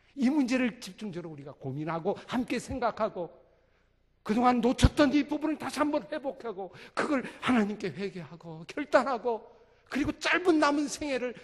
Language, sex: Korean, male